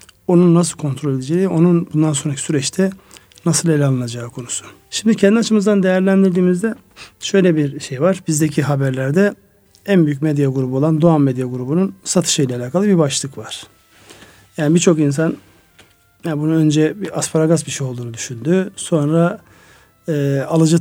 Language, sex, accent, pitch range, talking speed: Turkish, male, native, 135-170 Hz, 145 wpm